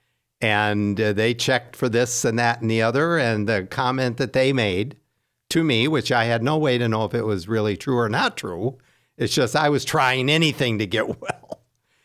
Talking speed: 210 wpm